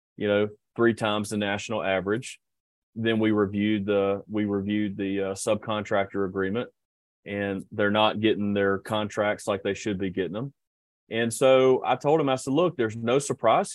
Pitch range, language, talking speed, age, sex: 100-120 Hz, English, 175 wpm, 30-49, male